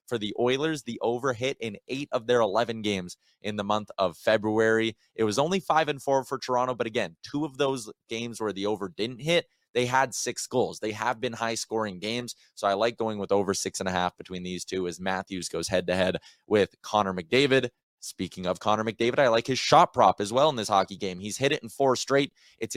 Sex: male